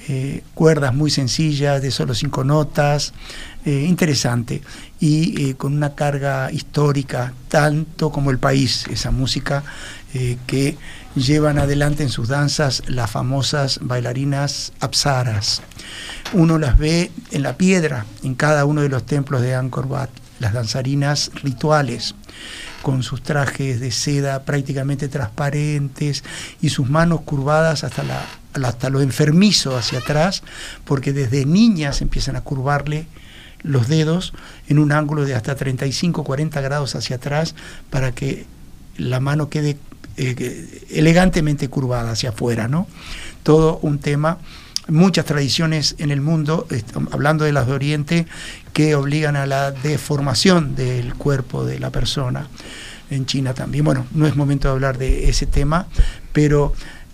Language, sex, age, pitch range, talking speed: Spanish, male, 60-79, 130-150 Hz, 140 wpm